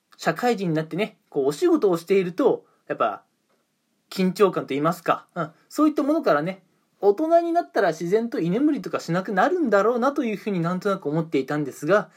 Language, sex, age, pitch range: Japanese, male, 20-39, 160-250 Hz